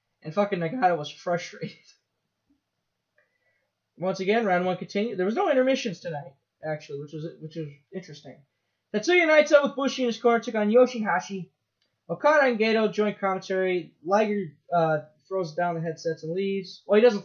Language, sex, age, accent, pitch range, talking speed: English, male, 10-29, American, 160-220 Hz, 165 wpm